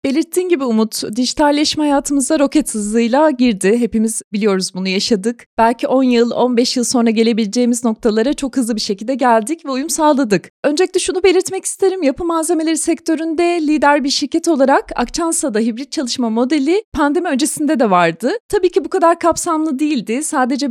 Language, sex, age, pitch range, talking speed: Turkish, female, 30-49, 235-320 Hz, 155 wpm